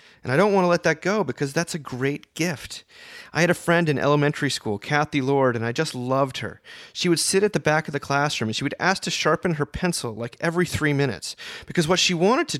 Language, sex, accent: English, male, American